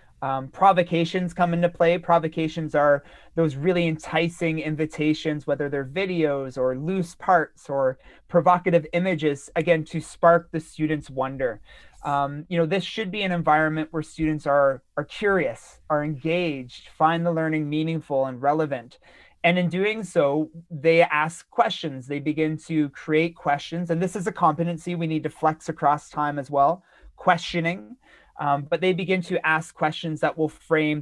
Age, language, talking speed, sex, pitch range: 30-49, English, 160 wpm, male, 150-175 Hz